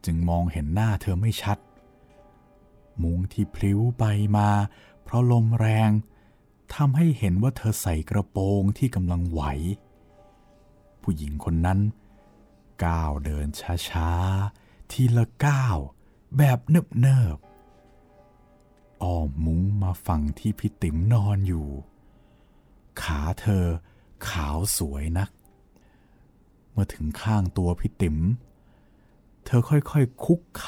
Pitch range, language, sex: 80-115 Hz, Thai, male